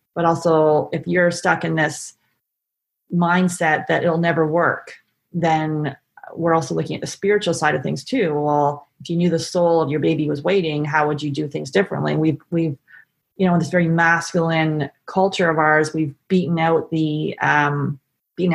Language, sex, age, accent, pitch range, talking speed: English, female, 30-49, American, 160-190 Hz, 185 wpm